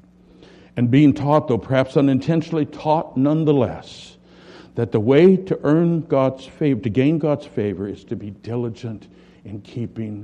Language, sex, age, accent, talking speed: English, male, 60-79, American, 145 wpm